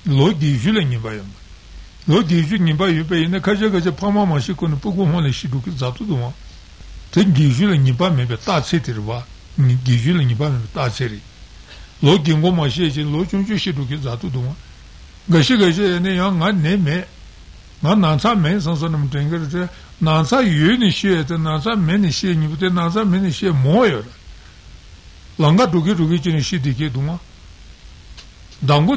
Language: Italian